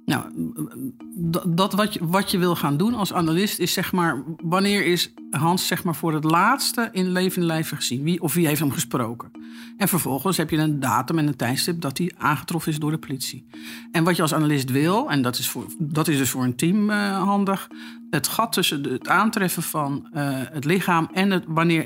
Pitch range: 140-180 Hz